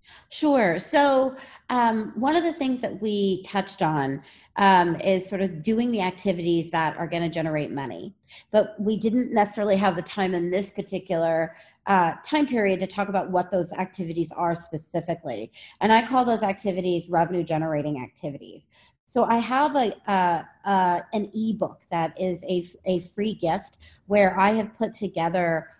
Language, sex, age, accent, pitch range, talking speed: English, female, 30-49, American, 165-205 Hz, 165 wpm